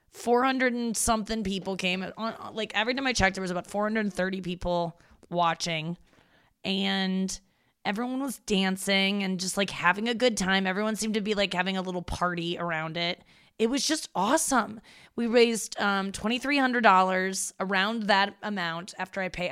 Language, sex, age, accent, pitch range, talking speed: English, female, 20-39, American, 180-215 Hz, 155 wpm